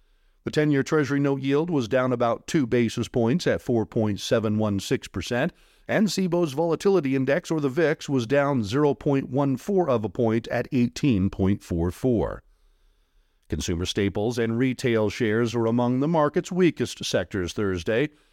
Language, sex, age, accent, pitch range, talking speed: English, male, 50-69, American, 110-150 Hz, 130 wpm